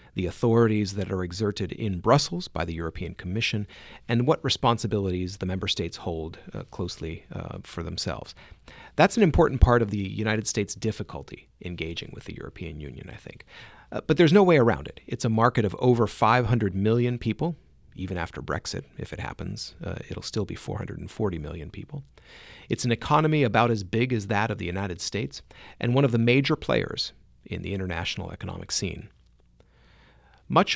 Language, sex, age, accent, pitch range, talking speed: English, male, 40-59, American, 90-115 Hz, 180 wpm